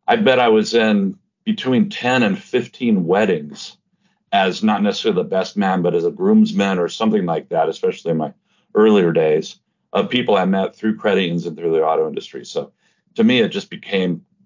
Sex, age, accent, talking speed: male, 50-69, American, 195 wpm